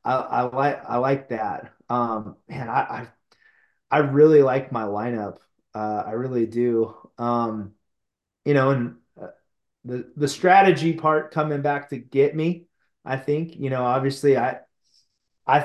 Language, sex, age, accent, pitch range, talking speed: English, male, 30-49, American, 125-150 Hz, 150 wpm